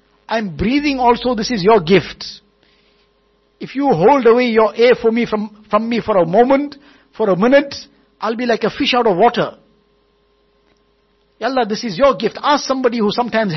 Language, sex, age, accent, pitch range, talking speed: English, male, 60-79, Indian, 185-245 Hz, 175 wpm